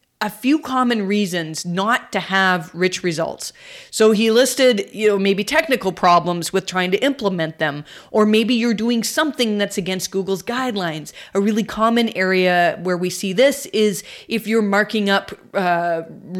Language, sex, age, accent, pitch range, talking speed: English, female, 30-49, American, 185-240 Hz, 165 wpm